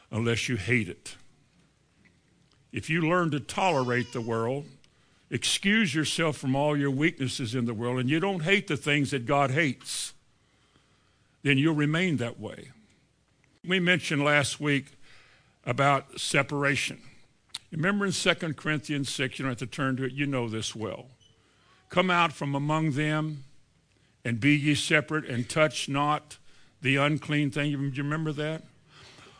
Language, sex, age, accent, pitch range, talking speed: English, male, 60-79, American, 130-160 Hz, 155 wpm